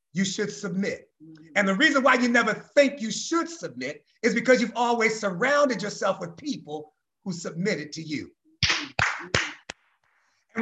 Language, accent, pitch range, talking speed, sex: English, American, 205-270 Hz, 145 wpm, male